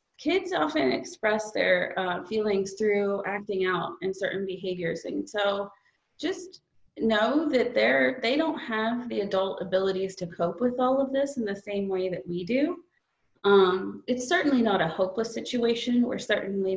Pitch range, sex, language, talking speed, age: 185-245 Hz, female, English, 165 wpm, 30-49